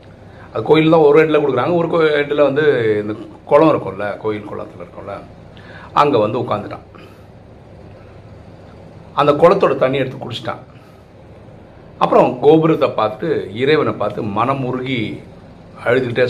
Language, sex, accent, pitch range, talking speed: Tamil, male, native, 105-140 Hz, 110 wpm